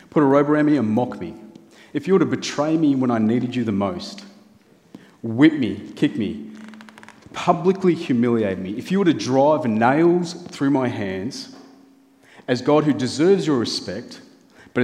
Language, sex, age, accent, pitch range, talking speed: English, male, 30-49, Australian, 105-165 Hz, 175 wpm